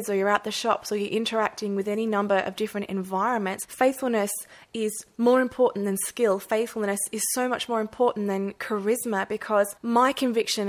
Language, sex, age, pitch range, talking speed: English, female, 20-39, 195-230 Hz, 175 wpm